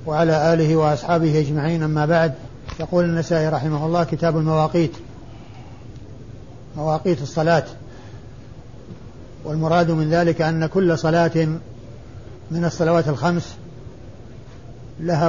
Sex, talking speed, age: male, 95 wpm, 50-69